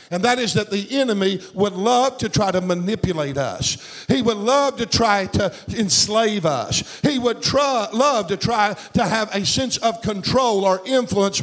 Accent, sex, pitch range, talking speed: American, male, 195-245 Hz, 185 wpm